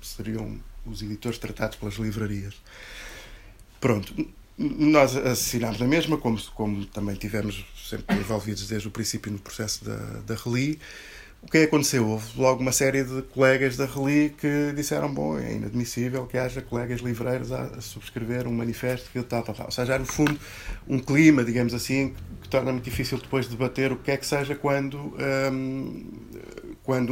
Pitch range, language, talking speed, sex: 110-130 Hz, Portuguese, 175 wpm, male